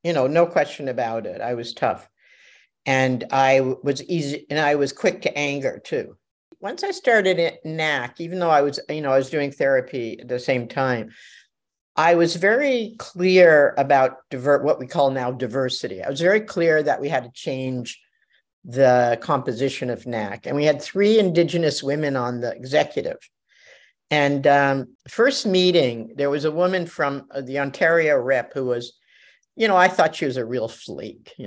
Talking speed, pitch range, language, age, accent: 180 wpm, 130-170 Hz, English, 50-69, American